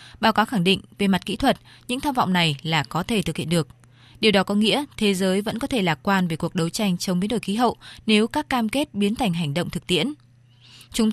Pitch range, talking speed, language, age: 170-220 Hz, 265 wpm, Vietnamese, 20-39